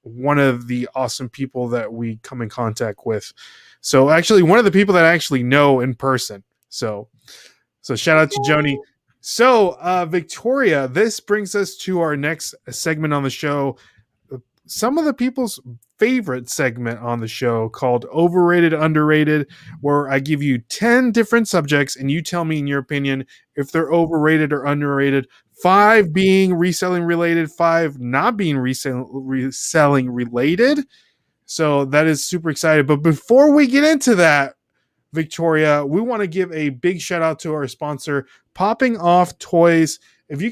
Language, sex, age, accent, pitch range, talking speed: English, male, 20-39, American, 140-190 Hz, 165 wpm